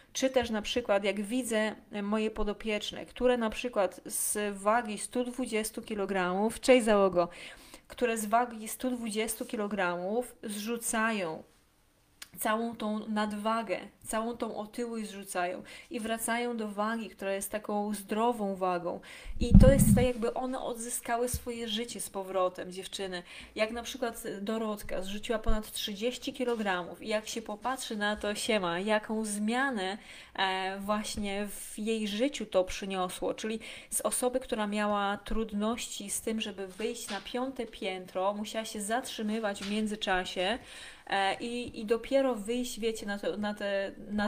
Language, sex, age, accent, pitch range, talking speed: Polish, female, 20-39, native, 200-235 Hz, 135 wpm